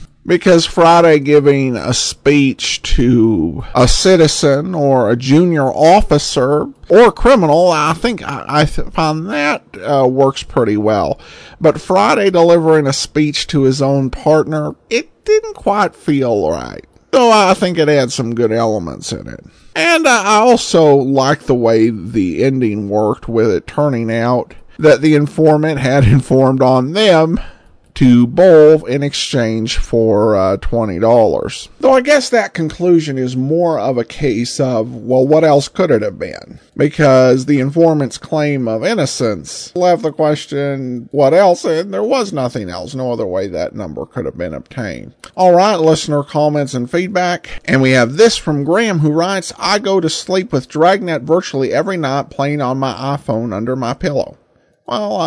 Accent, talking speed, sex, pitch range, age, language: American, 165 wpm, male, 130-170 Hz, 50-69, English